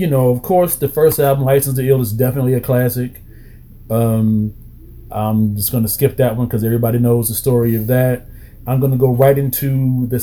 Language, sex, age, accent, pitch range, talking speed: English, male, 30-49, American, 115-135 Hz, 210 wpm